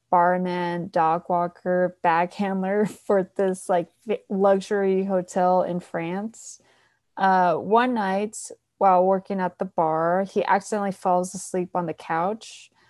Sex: female